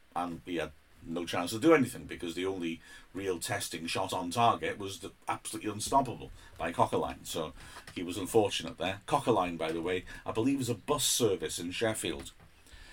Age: 40-59